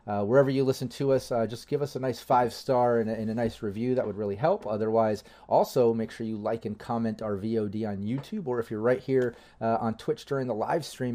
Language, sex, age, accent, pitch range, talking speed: English, male, 30-49, American, 105-125 Hz, 250 wpm